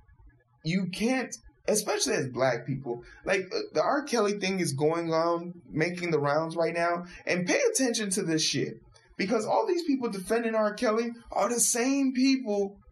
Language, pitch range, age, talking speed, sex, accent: English, 140-215 Hz, 20-39, 165 wpm, male, American